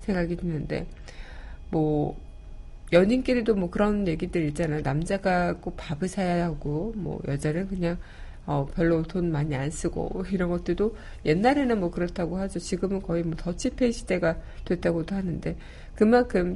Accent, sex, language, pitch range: native, female, Korean, 160-195 Hz